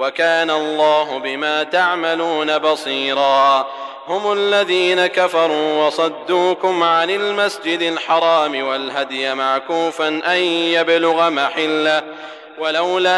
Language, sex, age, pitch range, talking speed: Arabic, male, 30-49, 155-180 Hz, 80 wpm